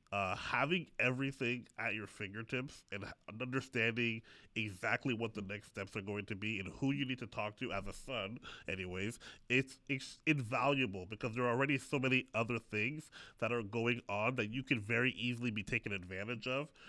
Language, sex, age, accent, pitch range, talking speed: English, male, 30-49, American, 110-130 Hz, 185 wpm